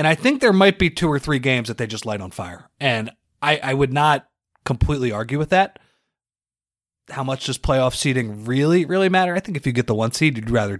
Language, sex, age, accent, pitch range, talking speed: English, male, 30-49, American, 110-140 Hz, 240 wpm